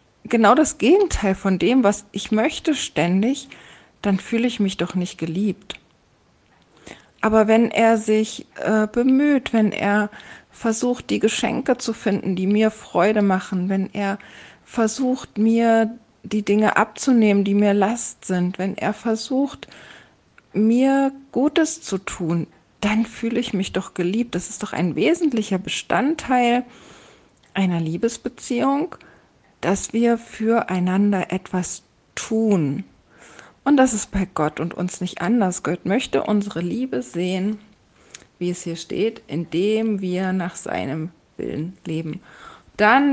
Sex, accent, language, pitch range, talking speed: female, German, German, 180-230 Hz, 130 wpm